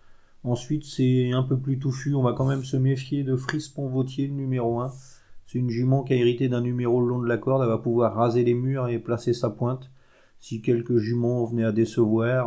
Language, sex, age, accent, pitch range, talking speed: French, male, 30-49, French, 110-125 Hz, 215 wpm